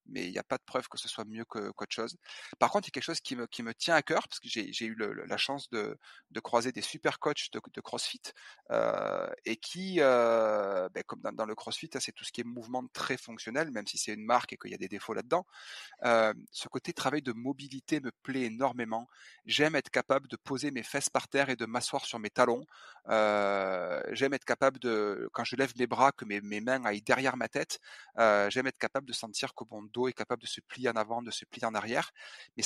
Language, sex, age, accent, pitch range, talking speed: French, male, 30-49, French, 115-135 Hz, 255 wpm